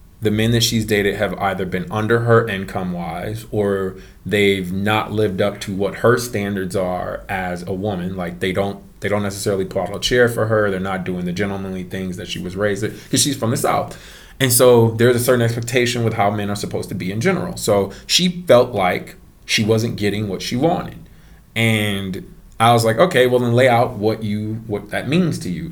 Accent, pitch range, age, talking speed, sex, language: American, 100-125 Hz, 20-39, 215 wpm, male, English